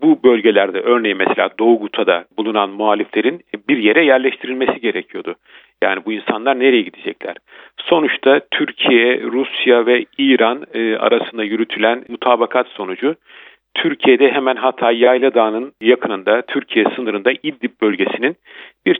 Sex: male